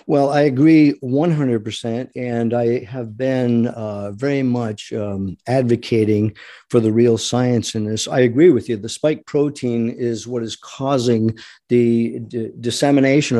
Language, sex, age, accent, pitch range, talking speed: English, male, 50-69, American, 115-130 Hz, 145 wpm